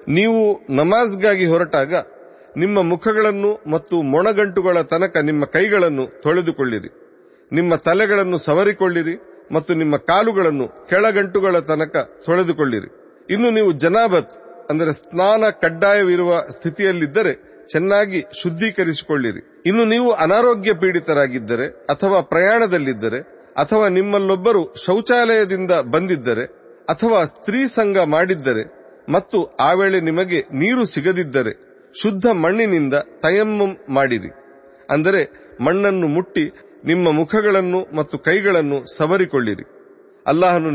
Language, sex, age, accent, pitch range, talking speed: Kannada, male, 40-59, native, 150-205 Hz, 90 wpm